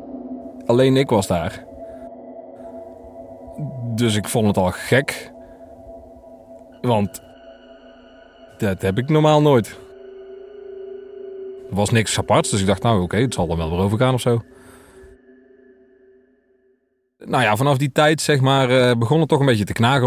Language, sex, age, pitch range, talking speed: Dutch, male, 30-49, 95-135 Hz, 145 wpm